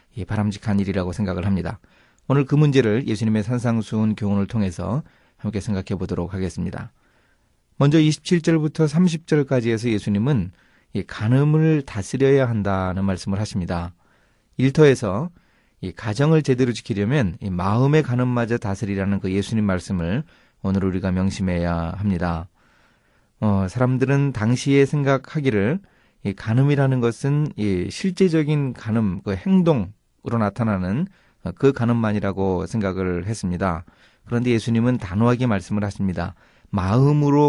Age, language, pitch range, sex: 30-49, Korean, 95-135 Hz, male